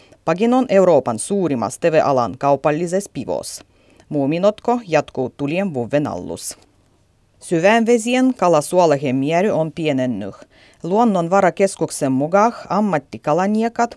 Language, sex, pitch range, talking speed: Finnish, female, 130-190 Hz, 100 wpm